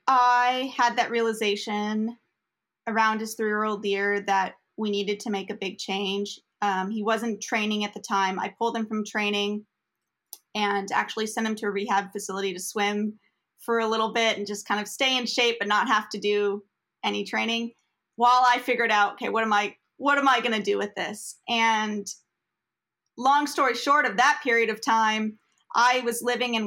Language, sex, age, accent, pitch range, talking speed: English, female, 30-49, American, 205-235 Hz, 195 wpm